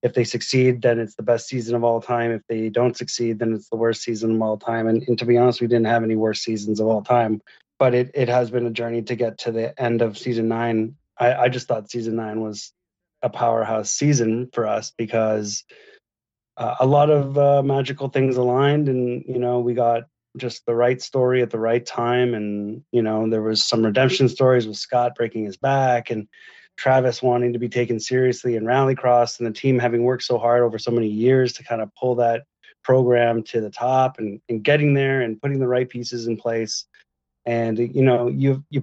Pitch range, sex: 115-125 Hz, male